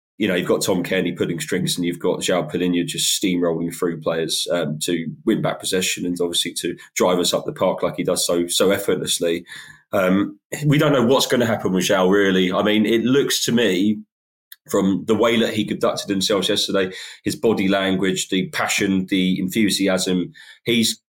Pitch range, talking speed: 90-105 Hz, 195 wpm